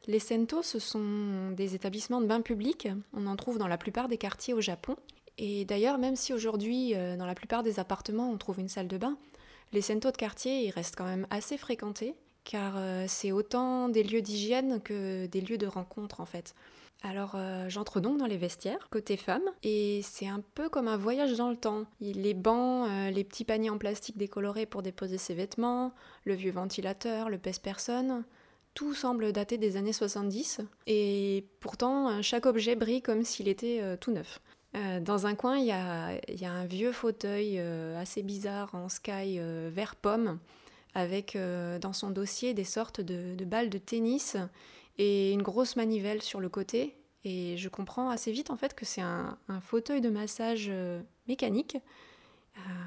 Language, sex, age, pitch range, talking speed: French, female, 20-39, 195-235 Hz, 185 wpm